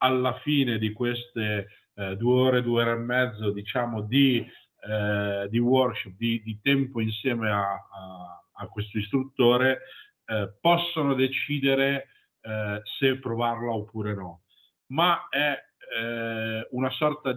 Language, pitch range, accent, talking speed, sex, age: Italian, 115-135 Hz, native, 130 wpm, male, 50-69